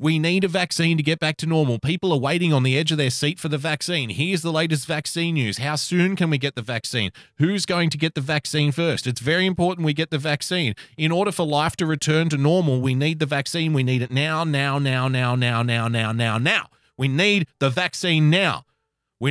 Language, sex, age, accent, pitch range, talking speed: English, male, 30-49, Australian, 115-165 Hz, 240 wpm